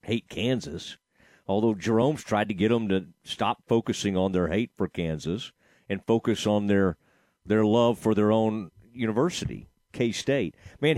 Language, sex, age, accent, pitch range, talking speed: English, male, 40-59, American, 105-160 Hz, 155 wpm